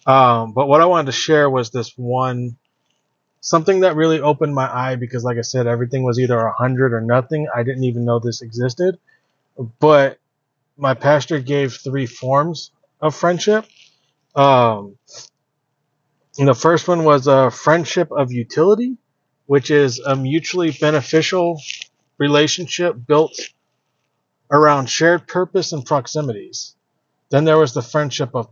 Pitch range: 130-155 Hz